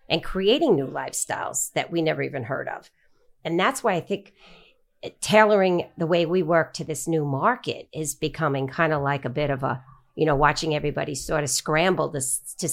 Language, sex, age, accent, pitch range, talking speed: English, female, 50-69, American, 145-180 Hz, 200 wpm